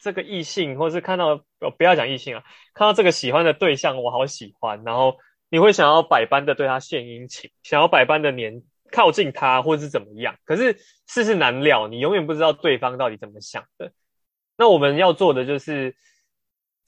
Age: 20-39